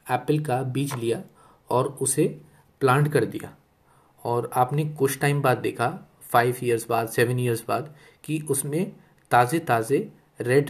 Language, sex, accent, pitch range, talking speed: Hindi, male, native, 125-155 Hz, 145 wpm